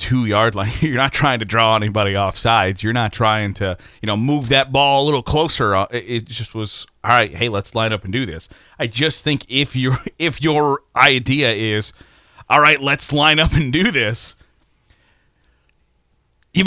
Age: 30-49